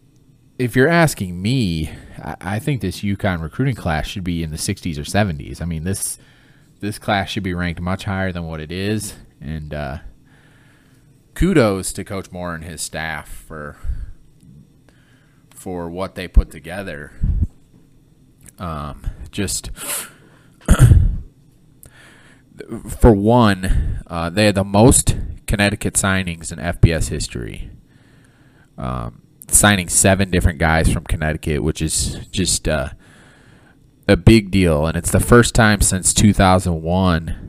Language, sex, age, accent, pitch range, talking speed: English, male, 30-49, American, 80-100 Hz, 130 wpm